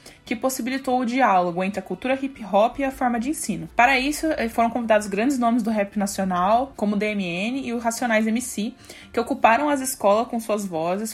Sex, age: female, 20-39